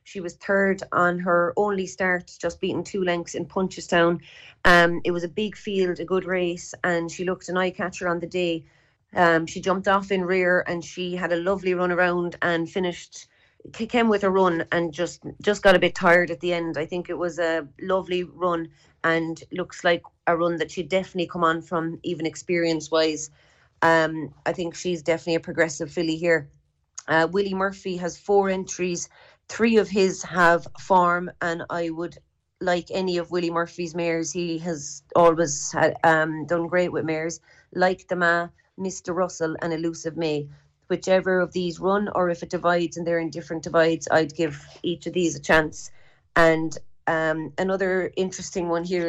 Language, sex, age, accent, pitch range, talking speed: English, female, 30-49, Irish, 165-185 Hz, 185 wpm